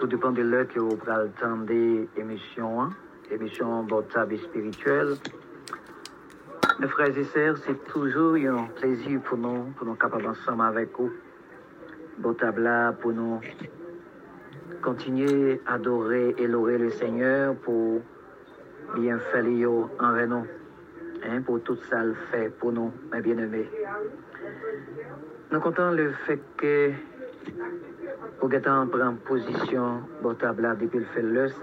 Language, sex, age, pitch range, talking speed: English, male, 50-69, 115-145 Hz, 140 wpm